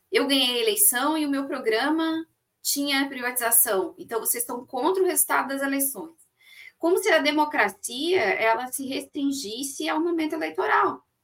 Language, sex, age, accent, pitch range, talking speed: Portuguese, female, 20-39, Brazilian, 230-335 Hz, 150 wpm